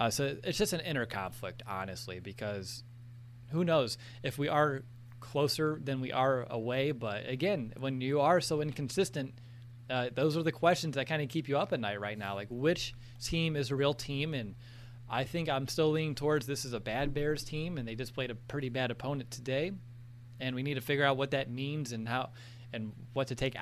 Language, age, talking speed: English, 20-39, 215 wpm